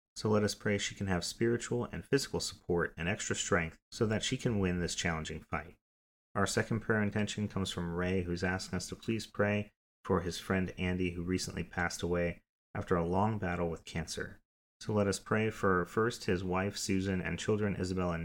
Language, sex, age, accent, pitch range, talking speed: English, male, 30-49, American, 85-105 Hz, 205 wpm